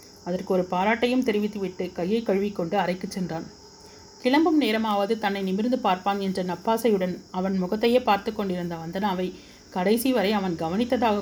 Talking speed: 130 wpm